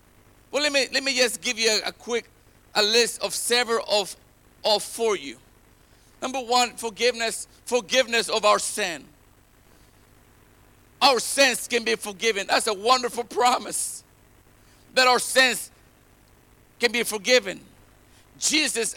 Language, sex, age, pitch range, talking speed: English, male, 50-69, 210-260 Hz, 130 wpm